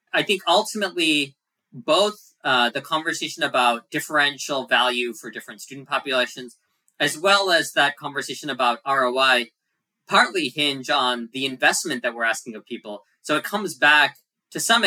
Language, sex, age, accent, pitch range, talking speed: English, male, 20-39, American, 125-150 Hz, 150 wpm